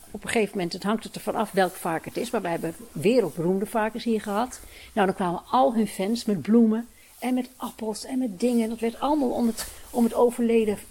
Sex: female